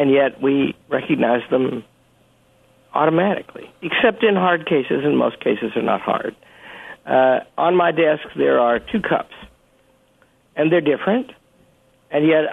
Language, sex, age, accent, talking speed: English, male, 60-79, American, 140 wpm